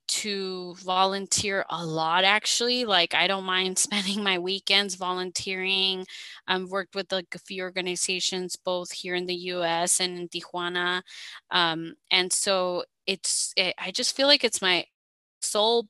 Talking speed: 150 wpm